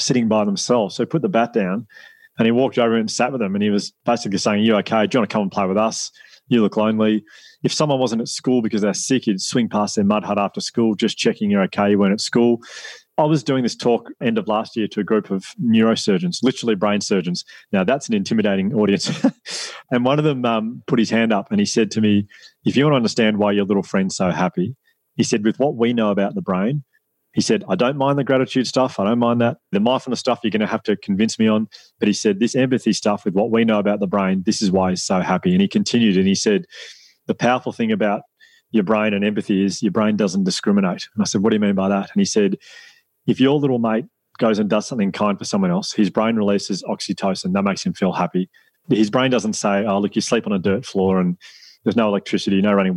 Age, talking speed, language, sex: 30-49, 260 wpm, English, male